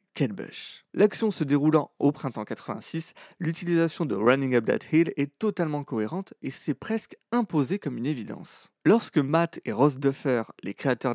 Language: French